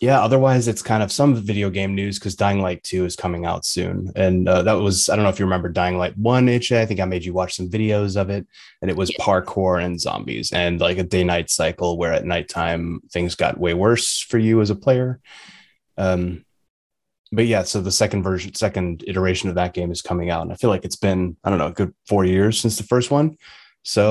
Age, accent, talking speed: 20-39, American, 240 wpm